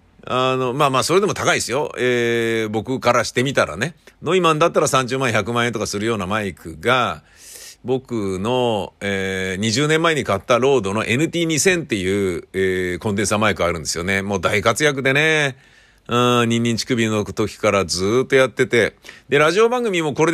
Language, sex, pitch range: Japanese, male, 100-145 Hz